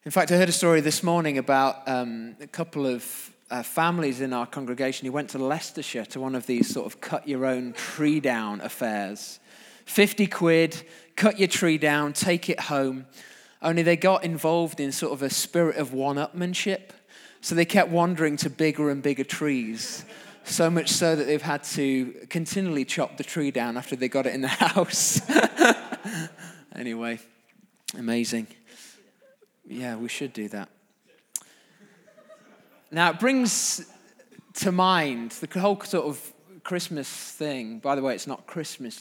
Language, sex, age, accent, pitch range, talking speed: English, male, 20-39, British, 130-175 Hz, 160 wpm